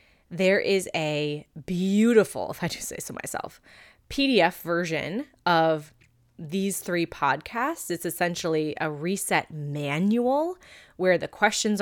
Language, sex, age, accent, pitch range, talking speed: English, female, 20-39, American, 160-220 Hz, 120 wpm